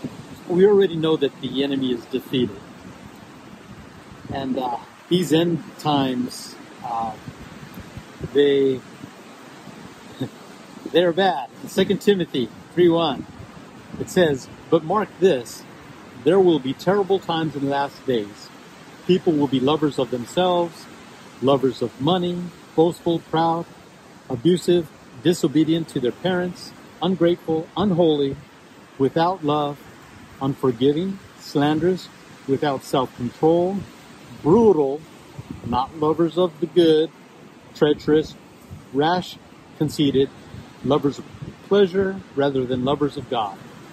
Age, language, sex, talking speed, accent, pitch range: 50-69, English, male, 105 wpm, American, 135-175 Hz